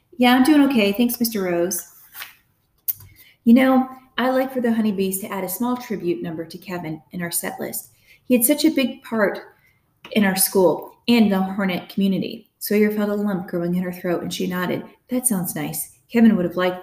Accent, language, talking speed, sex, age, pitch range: American, English, 205 wpm, female, 30-49, 175-230 Hz